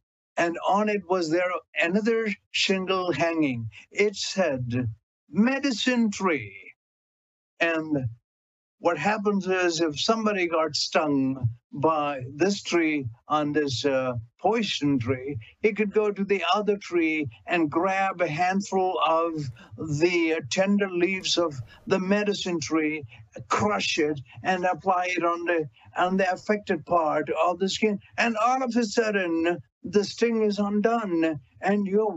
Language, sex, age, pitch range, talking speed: English, male, 60-79, 150-210 Hz, 130 wpm